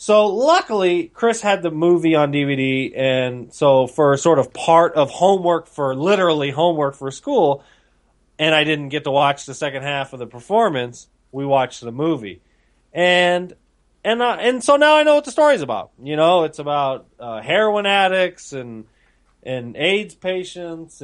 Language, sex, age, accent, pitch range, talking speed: English, male, 30-49, American, 130-185 Hz, 170 wpm